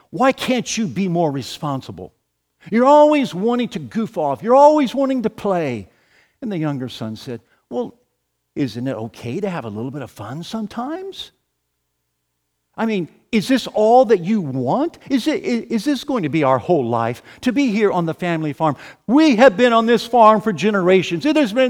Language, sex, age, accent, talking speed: English, male, 50-69, American, 195 wpm